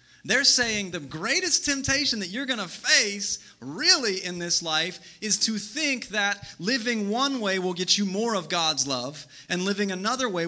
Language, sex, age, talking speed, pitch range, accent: English, male, 30-49, 185 wpm, 145-200 Hz, American